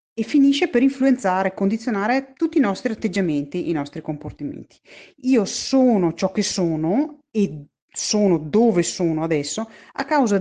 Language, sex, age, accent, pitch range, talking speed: Italian, female, 40-59, native, 175-265 Hz, 145 wpm